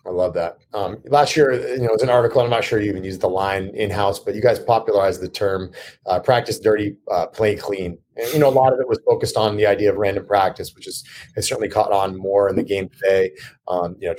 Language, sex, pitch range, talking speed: English, male, 100-140 Hz, 260 wpm